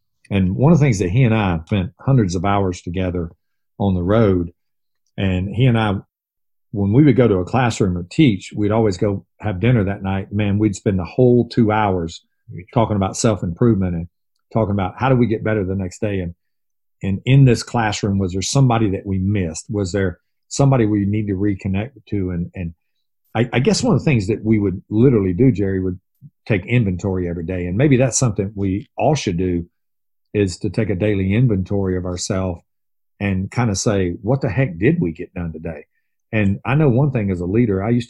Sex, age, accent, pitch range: male, 40-59, American, 90-115 Hz